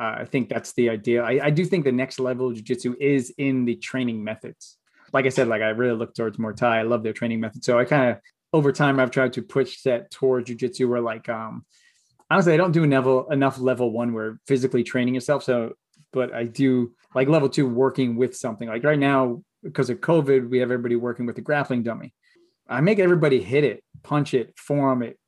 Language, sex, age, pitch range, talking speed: English, male, 20-39, 125-150 Hz, 230 wpm